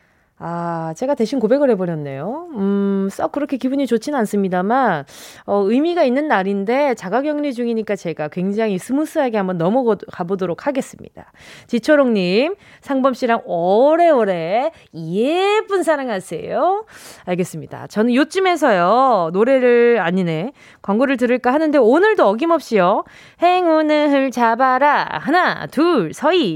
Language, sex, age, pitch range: Korean, female, 20-39, 205-320 Hz